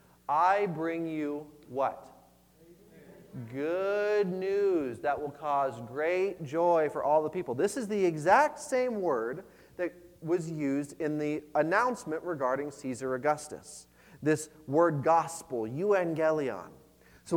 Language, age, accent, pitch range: English, 30-49, American, 160-245 Hz